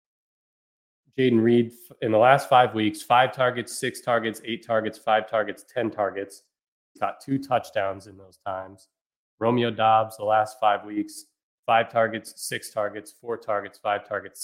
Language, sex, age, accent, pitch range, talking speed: English, male, 20-39, American, 105-125 Hz, 160 wpm